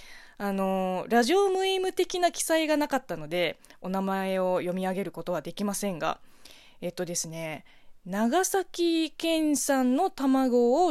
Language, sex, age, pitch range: Japanese, female, 20-39, 185-300 Hz